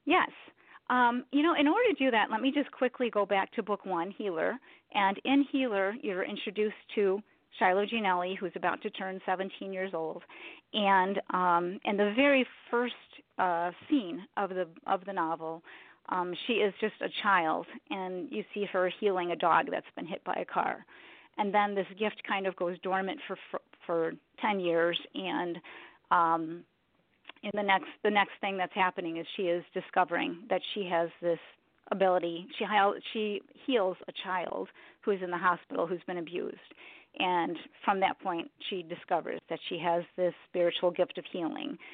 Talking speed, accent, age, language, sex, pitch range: 180 wpm, American, 40-59, English, female, 180-220 Hz